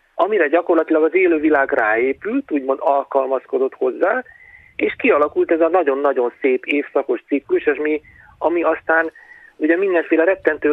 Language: Hungarian